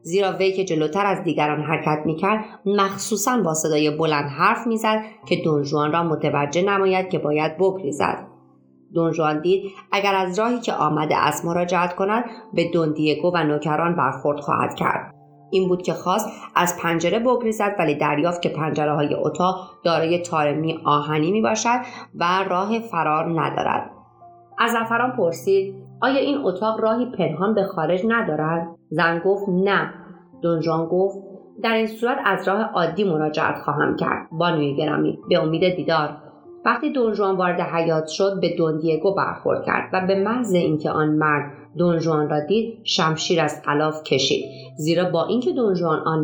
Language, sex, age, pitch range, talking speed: Persian, female, 30-49, 150-190 Hz, 150 wpm